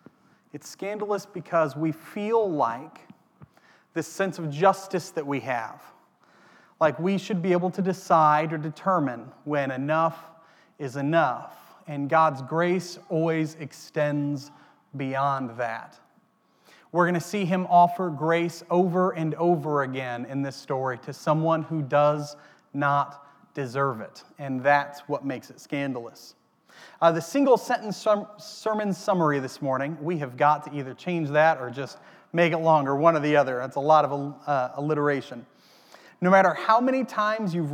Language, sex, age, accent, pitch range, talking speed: English, male, 30-49, American, 140-180 Hz, 150 wpm